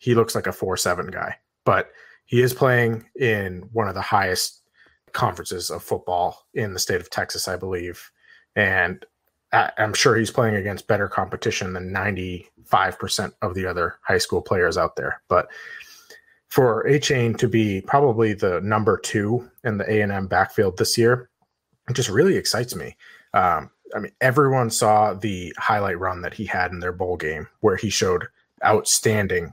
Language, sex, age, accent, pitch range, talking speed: English, male, 30-49, American, 100-130 Hz, 165 wpm